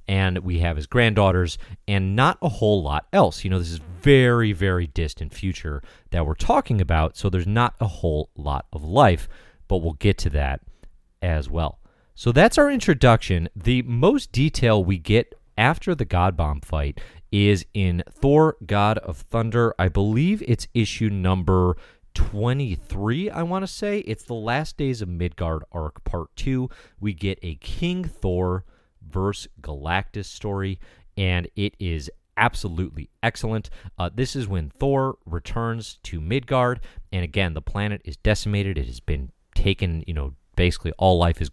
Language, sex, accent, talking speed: English, male, American, 165 wpm